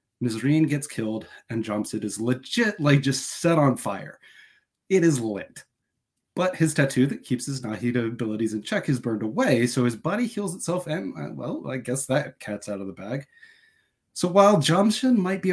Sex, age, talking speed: male, 30-49, 190 wpm